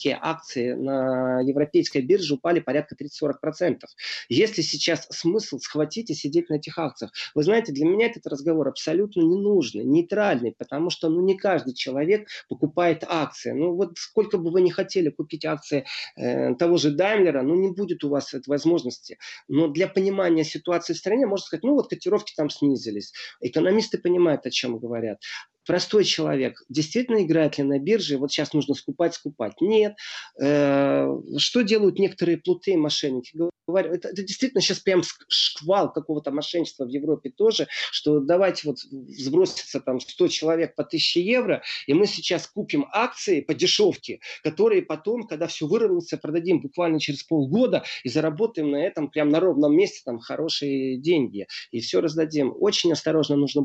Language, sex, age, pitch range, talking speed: Russian, male, 30-49, 145-195 Hz, 160 wpm